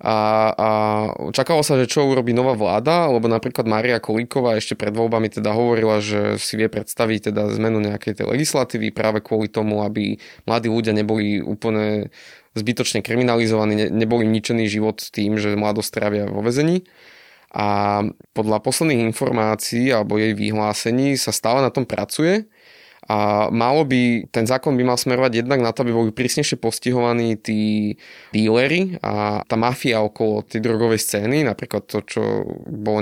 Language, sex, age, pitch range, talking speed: Slovak, male, 20-39, 105-120 Hz, 160 wpm